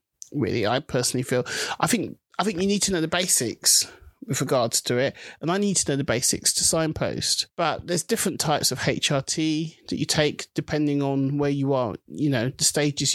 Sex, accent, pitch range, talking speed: male, British, 140-170 Hz, 205 wpm